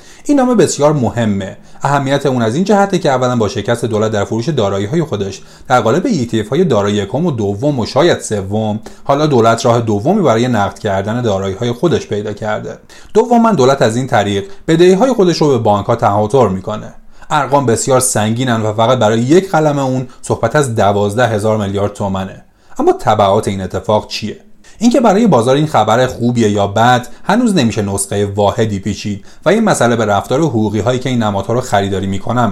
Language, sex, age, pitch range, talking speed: Persian, male, 30-49, 105-145 Hz, 185 wpm